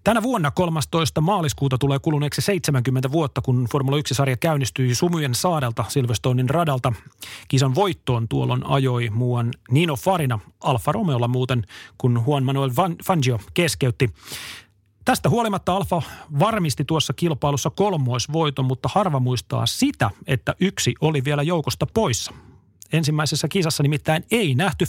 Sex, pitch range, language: male, 125-165 Hz, Finnish